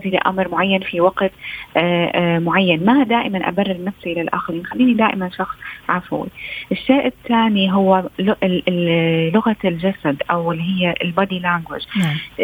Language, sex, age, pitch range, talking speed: Arabic, female, 30-49, 175-225 Hz, 130 wpm